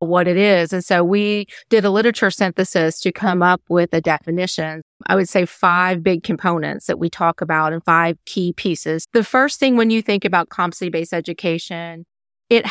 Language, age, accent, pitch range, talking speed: English, 30-49, American, 170-200 Hz, 195 wpm